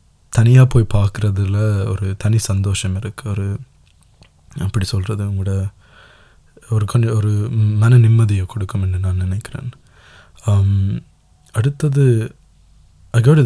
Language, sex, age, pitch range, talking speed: Tamil, male, 20-39, 95-120 Hz, 85 wpm